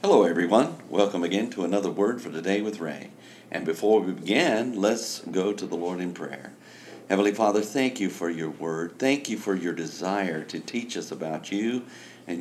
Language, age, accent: English, 50-69, American